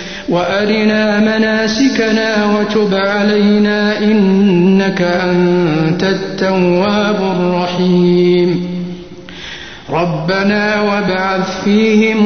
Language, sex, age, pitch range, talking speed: Arabic, male, 50-69, 180-210 Hz, 55 wpm